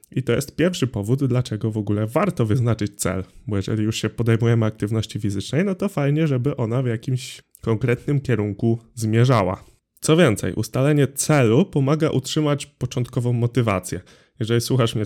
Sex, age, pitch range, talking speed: male, 20-39, 110-130 Hz, 155 wpm